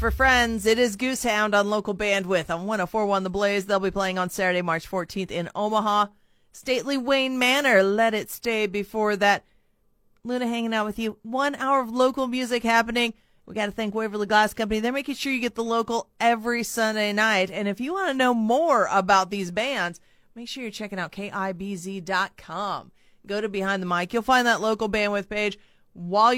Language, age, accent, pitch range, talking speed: English, 30-49, American, 195-235 Hz, 195 wpm